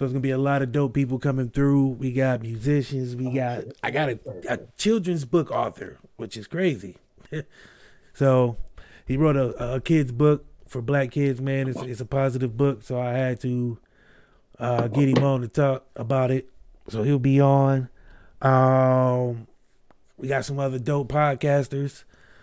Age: 30-49